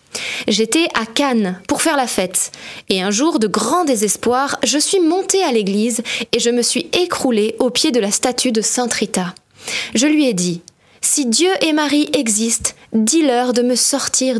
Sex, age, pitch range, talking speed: female, 20-39, 215-290 Hz, 185 wpm